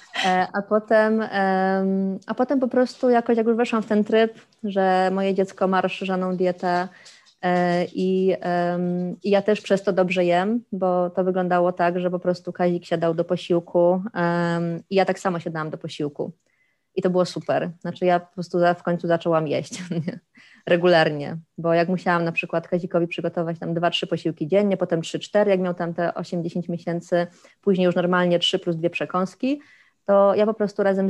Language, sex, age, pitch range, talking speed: Polish, female, 20-39, 170-190 Hz, 175 wpm